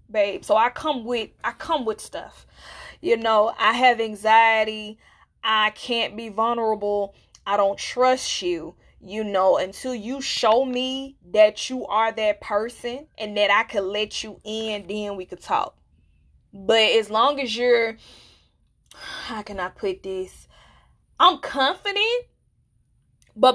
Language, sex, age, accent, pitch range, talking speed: English, female, 20-39, American, 205-250 Hz, 145 wpm